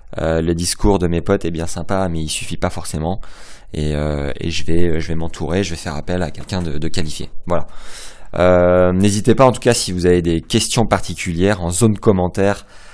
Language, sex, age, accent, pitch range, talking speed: French, male, 20-39, French, 80-95 Hz, 220 wpm